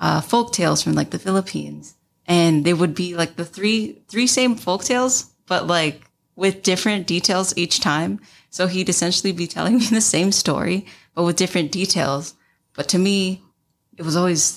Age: 20-39